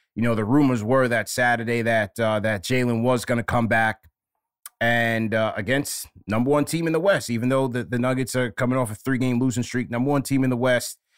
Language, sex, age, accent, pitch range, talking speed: English, male, 20-39, American, 110-125 Hz, 230 wpm